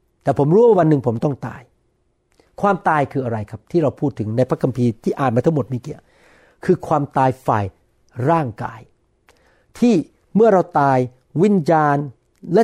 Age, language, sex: 60-79, Thai, male